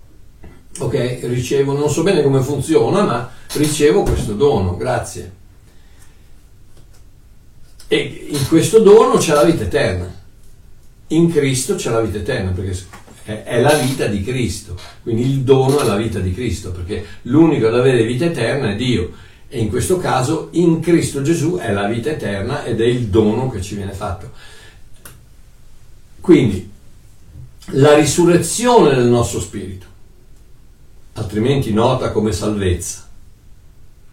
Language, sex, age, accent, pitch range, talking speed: Italian, male, 60-79, native, 105-155 Hz, 135 wpm